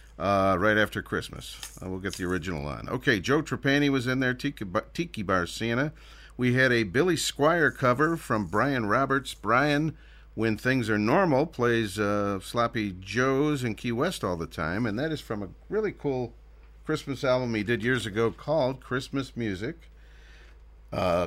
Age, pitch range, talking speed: 50-69, 95-130 Hz, 170 wpm